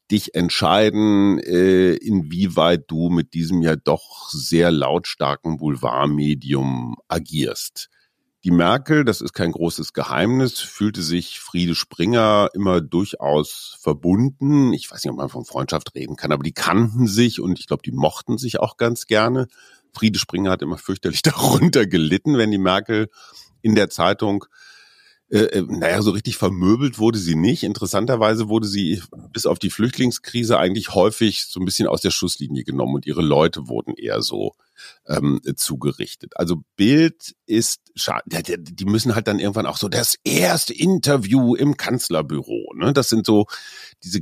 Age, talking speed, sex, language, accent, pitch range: 50-69, 155 wpm, male, German, German, 85-115 Hz